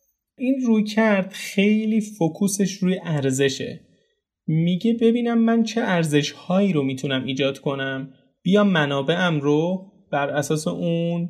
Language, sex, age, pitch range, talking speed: Persian, male, 30-49, 145-190 Hz, 115 wpm